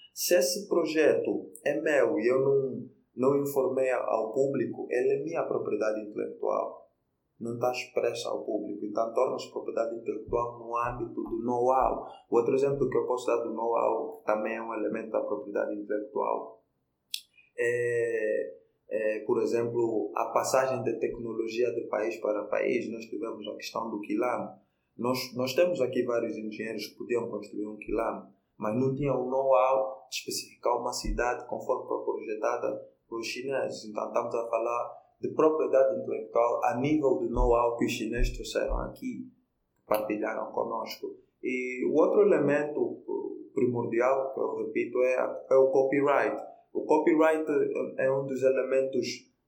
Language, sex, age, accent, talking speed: Portuguese, male, 20-39, Brazilian, 155 wpm